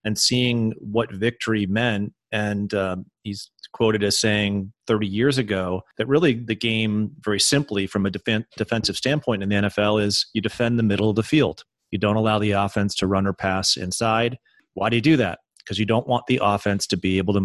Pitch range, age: 100-115 Hz, 30-49